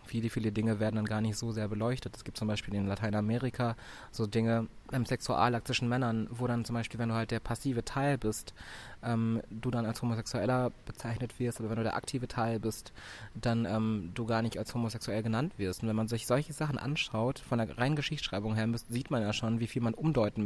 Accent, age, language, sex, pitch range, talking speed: German, 20-39, German, male, 110-120 Hz, 220 wpm